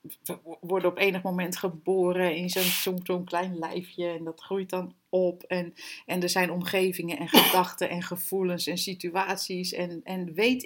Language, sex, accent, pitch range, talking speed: Dutch, female, Dutch, 175-215 Hz, 165 wpm